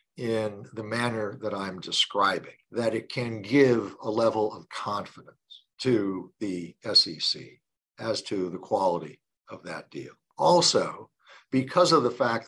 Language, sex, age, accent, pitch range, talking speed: English, male, 50-69, American, 105-125 Hz, 140 wpm